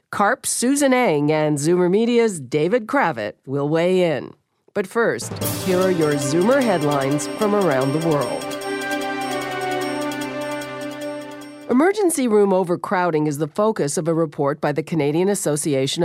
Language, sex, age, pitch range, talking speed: English, female, 50-69, 150-205 Hz, 130 wpm